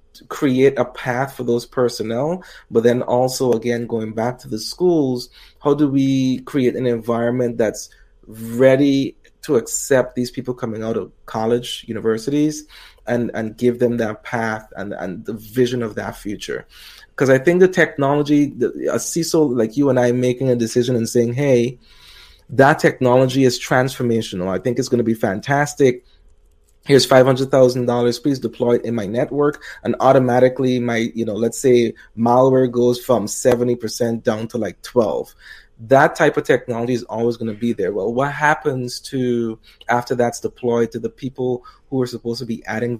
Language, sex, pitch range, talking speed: English, male, 115-130 Hz, 170 wpm